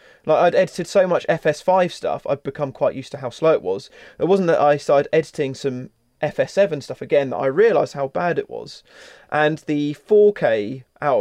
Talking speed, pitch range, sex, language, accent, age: 200 wpm, 135-165 Hz, male, English, British, 20-39